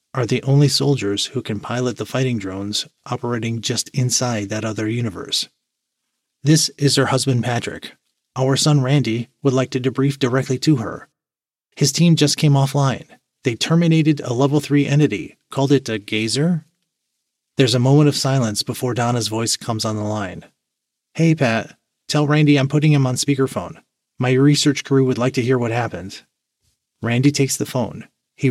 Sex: male